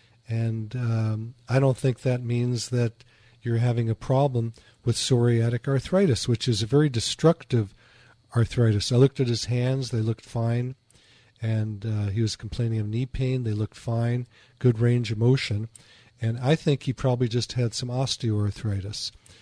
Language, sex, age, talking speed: English, male, 40-59, 165 wpm